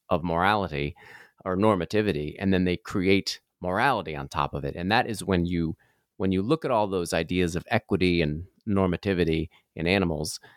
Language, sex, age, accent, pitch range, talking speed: English, male, 30-49, American, 85-105 Hz, 175 wpm